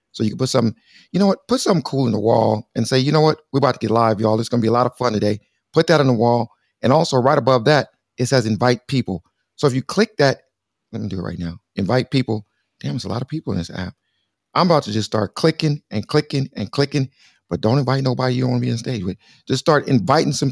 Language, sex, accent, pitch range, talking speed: English, male, American, 110-150 Hz, 280 wpm